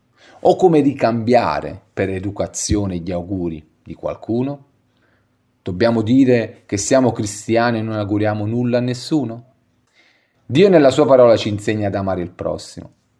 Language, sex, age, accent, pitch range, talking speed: Italian, male, 40-59, native, 90-120 Hz, 135 wpm